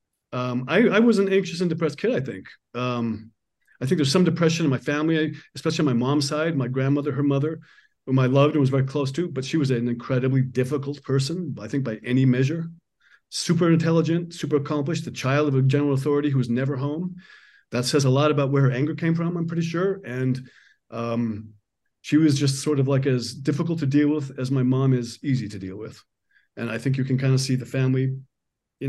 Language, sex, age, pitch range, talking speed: English, male, 40-59, 125-150 Hz, 225 wpm